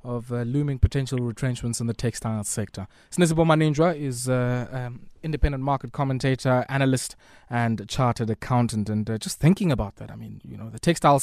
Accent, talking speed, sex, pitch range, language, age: South African, 175 wpm, male, 115-140 Hz, English, 20-39